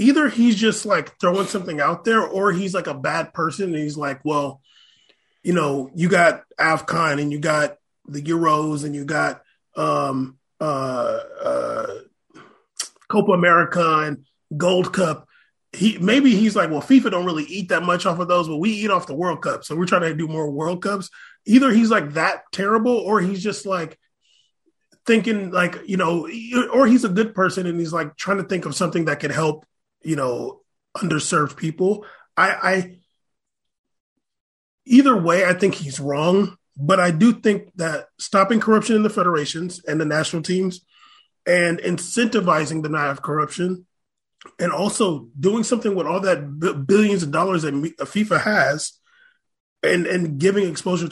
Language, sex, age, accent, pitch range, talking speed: English, male, 30-49, American, 155-205 Hz, 170 wpm